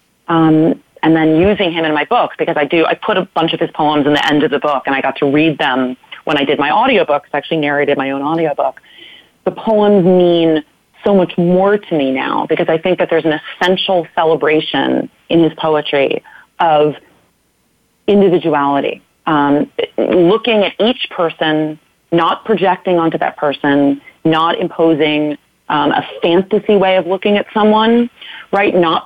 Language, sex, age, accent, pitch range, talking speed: English, female, 30-49, American, 155-190 Hz, 175 wpm